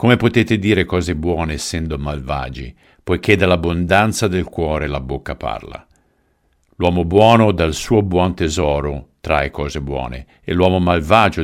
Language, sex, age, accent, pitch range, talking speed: Italian, male, 50-69, native, 75-95 Hz, 135 wpm